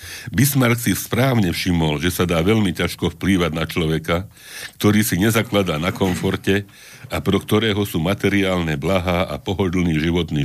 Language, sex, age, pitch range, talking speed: Slovak, male, 60-79, 80-100 Hz, 150 wpm